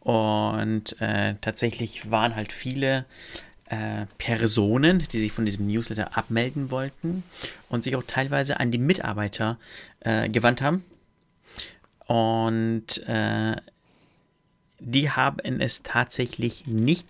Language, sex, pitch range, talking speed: German, male, 105-120 Hz, 110 wpm